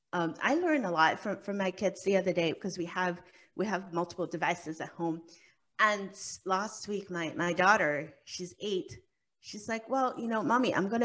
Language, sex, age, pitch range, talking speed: English, female, 30-49, 175-235 Hz, 200 wpm